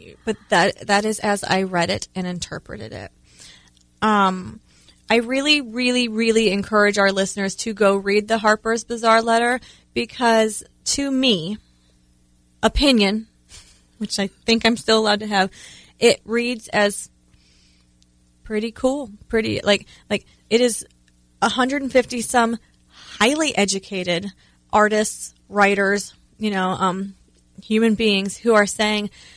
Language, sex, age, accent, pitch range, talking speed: English, female, 20-39, American, 195-235 Hz, 130 wpm